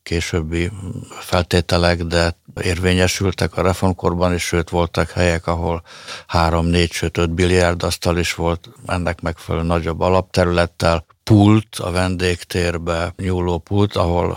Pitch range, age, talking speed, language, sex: 85-90 Hz, 60-79, 115 wpm, Hungarian, male